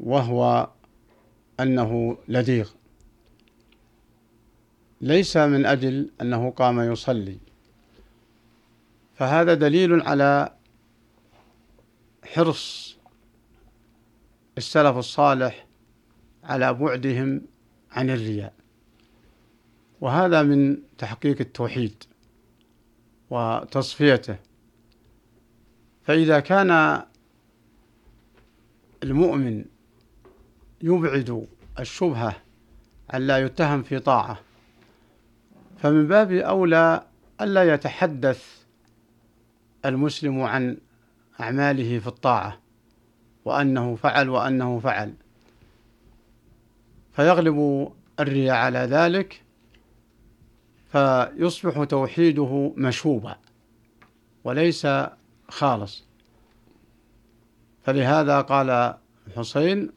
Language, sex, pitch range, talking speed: Arabic, male, 115-140 Hz, 60 wpm